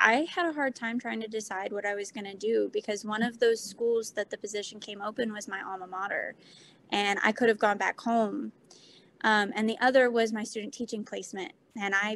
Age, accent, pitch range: 20-39, American, 200-235 Hz